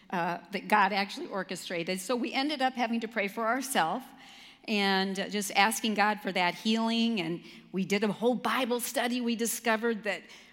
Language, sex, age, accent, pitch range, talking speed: English, female, 50-69, American, 200-255 Hz, 180 wpm